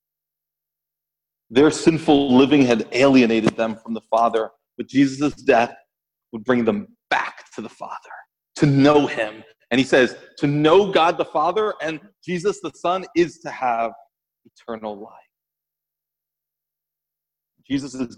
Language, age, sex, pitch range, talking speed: English, 40-59, male, 140-180 Hz, 130 wpm